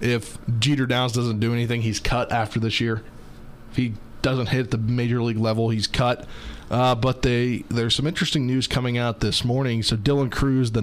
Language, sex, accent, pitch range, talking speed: English, male, American, 105-125 Hz, 200 wpm